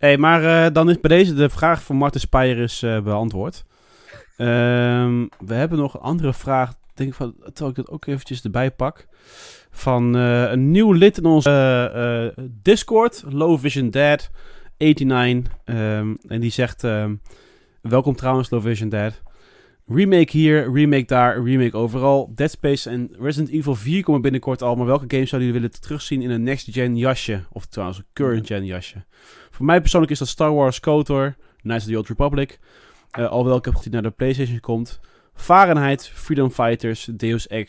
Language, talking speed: Dutch, 180 wpm